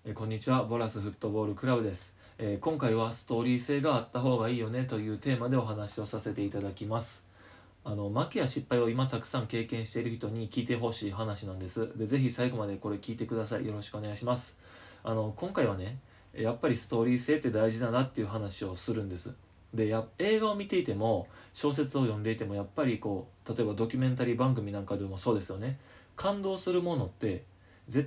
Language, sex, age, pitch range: Japanese, male, 20-39, 105-130 Hz